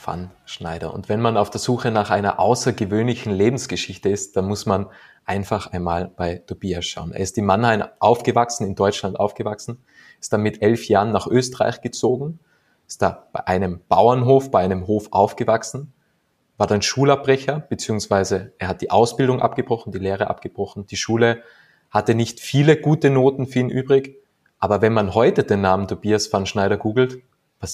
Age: 20-39